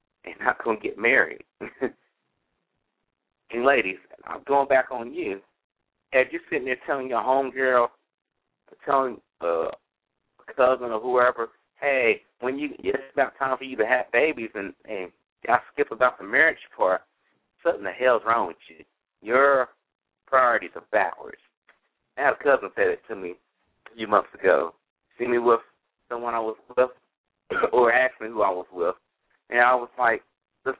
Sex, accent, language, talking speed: male, American, English, 165 wpm